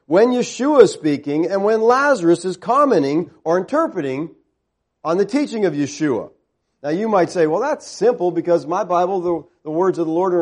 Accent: American